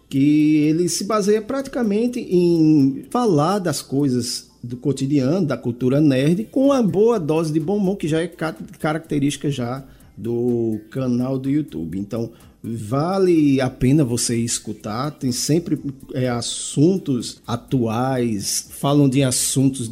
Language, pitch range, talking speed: Portuguese, 125-180 Hz, 130 wpm